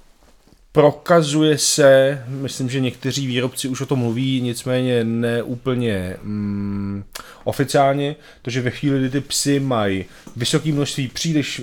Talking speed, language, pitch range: 125 wpm, Czech, 115-135 Hz